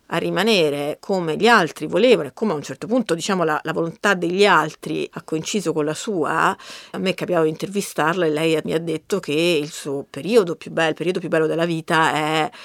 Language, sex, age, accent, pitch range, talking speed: Italian, female, 40-59, native, 160-210 Hz, 220 wpm